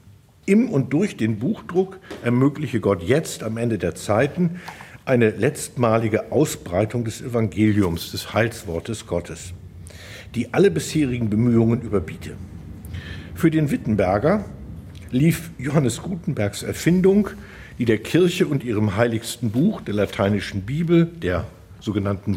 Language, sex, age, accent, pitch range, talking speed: German, male, 60-79, German, 105-155 Hz, 120 wpm